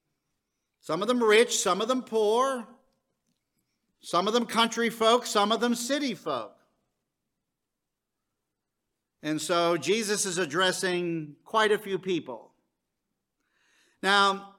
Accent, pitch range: American, 155-205 Hz